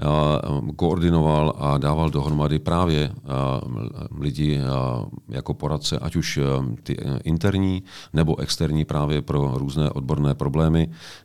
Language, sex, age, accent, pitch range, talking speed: Czech, male, 40-59, native, 70-80 Hz, 100 wpm